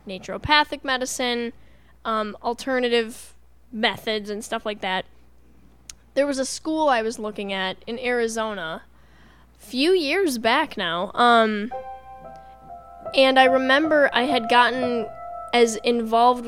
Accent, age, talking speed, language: American, 10-29, 120 wpm, English